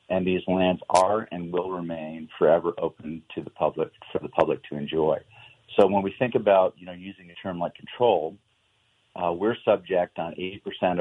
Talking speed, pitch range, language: 185 wpm, 85-95 Hz, English